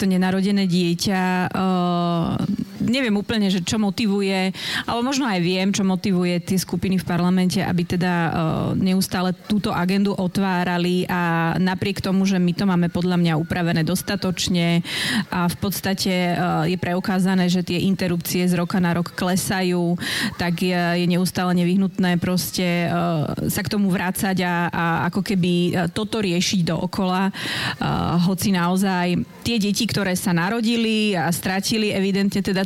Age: 30-49